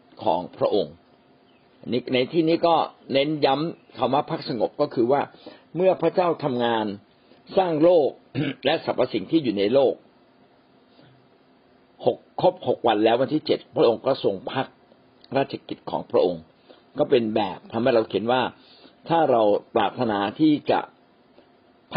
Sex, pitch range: male, 115-155 Hz